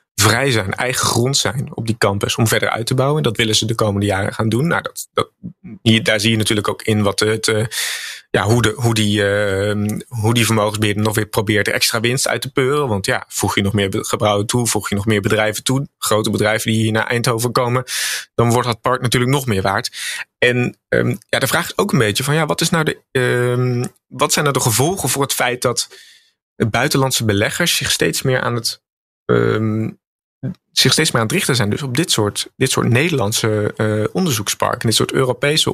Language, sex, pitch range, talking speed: Dutch, male, 105-125 Hz, 220 wpm